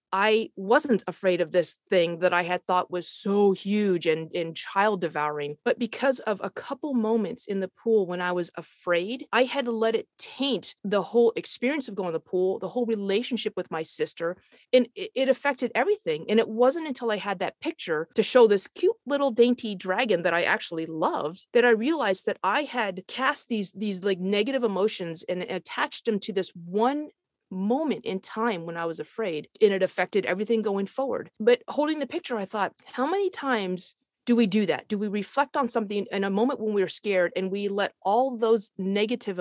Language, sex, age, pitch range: English, female, 30-49, 180-240 Hz